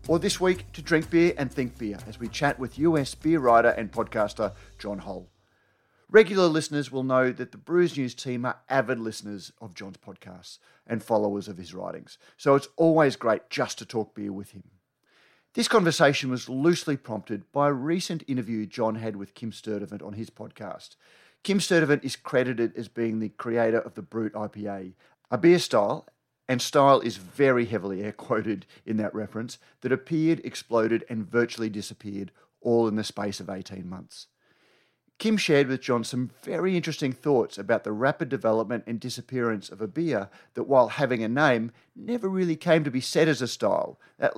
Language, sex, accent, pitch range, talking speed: English, male, Australian, 110-155 Hz, 185 wpm